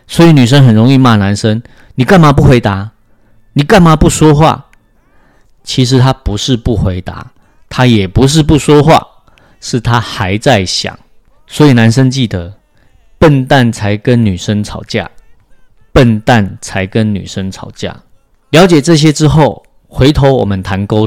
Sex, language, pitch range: male, Chinese, 105-140 Hz